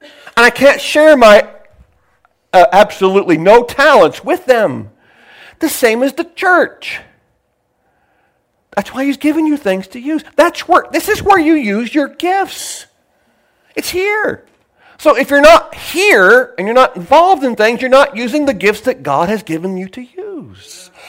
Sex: male